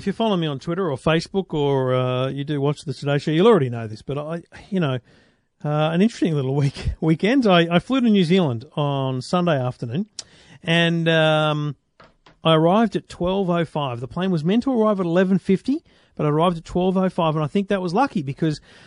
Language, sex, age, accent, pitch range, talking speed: English, male, 40-59, Australian, 145-190 Hz, 205 wpm